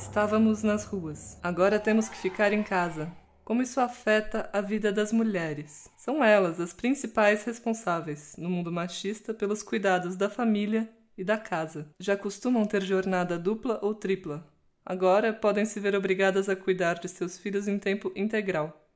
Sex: female